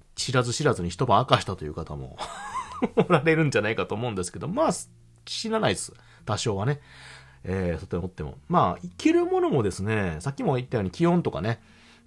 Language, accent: Japanese, native